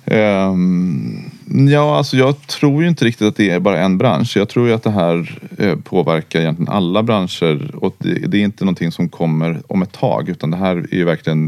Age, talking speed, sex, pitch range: 30-49, 205 wpm, male, 80-115 Hz